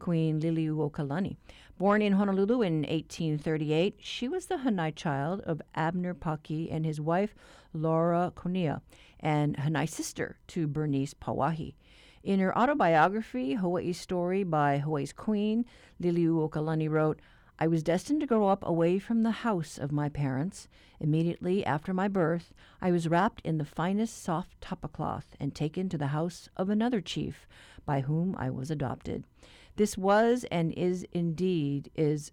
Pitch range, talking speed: 150-195 Hz, 150 wpm